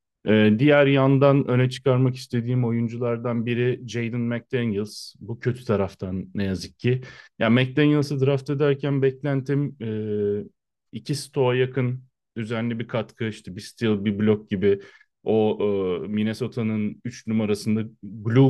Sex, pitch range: male, 105-130 Hz